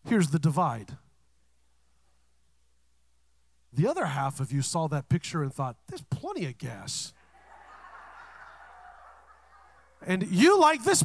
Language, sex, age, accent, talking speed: English, male, 40-59, American, 115 wpm